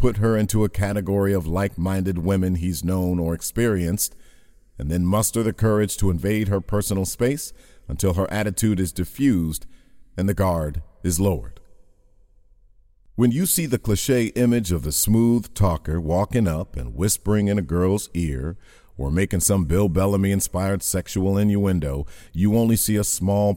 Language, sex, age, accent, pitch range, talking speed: English, male, 50-69, American, 90-110 Hz, 160 wpm